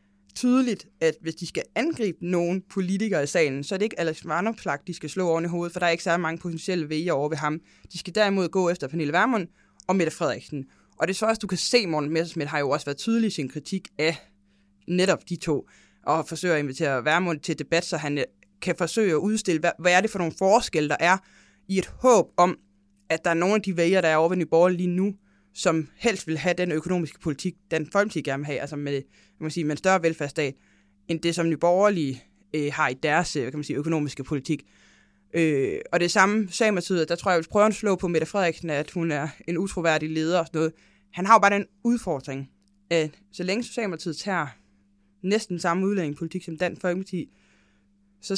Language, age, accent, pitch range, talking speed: English, 20-39, Danish, 155-190 Hz, 215 wpm